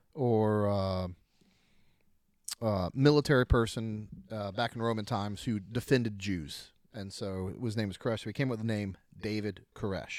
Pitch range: 110-145 Hz